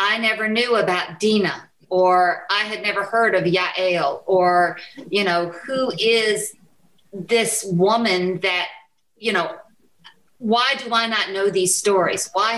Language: English